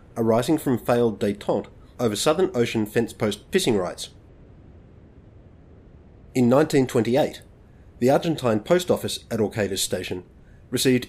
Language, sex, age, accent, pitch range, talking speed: English, male, 30-49, Australian, 105-135 Hz, 110 wpm